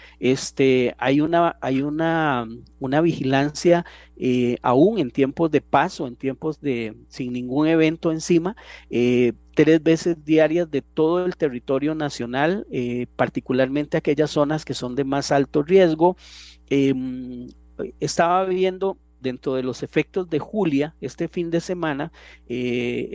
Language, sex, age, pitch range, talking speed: Spanish, male, 40-59, 130-170 Hz, 135 wpm